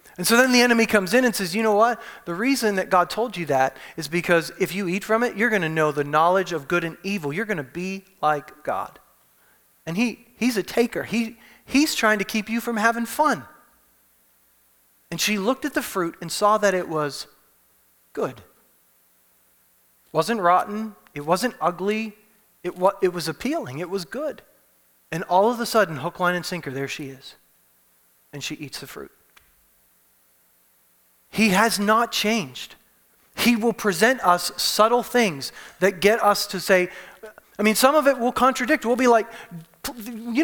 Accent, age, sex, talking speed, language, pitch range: American, 30-49, male, 180 wpm, English, 150-245 Hz